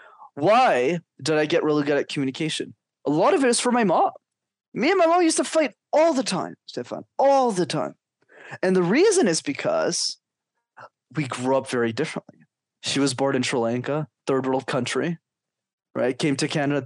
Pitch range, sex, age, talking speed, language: 140-230 Hz, male, 20-39, 190 wpm, English